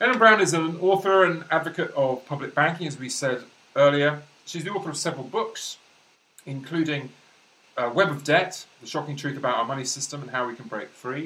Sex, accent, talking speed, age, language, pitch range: male, British, 205 wpm, 30-49, English, 130-160 Hz